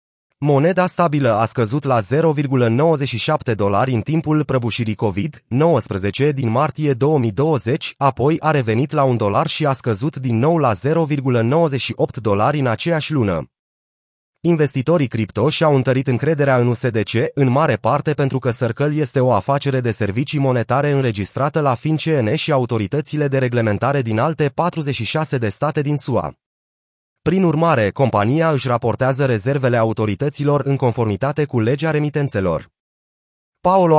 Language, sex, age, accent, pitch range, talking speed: Romanian, male, 30-49, native, 115-150 Hz, 135 wpm